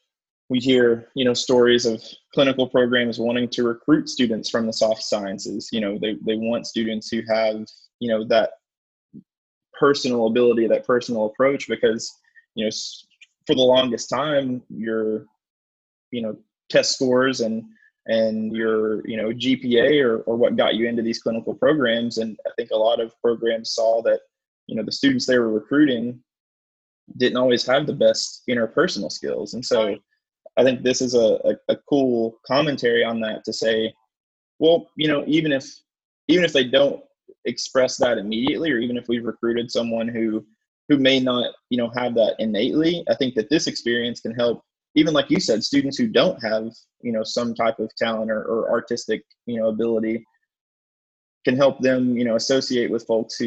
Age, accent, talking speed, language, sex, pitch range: 20-39, American, 180 wpm, English, male, 110-135 Hz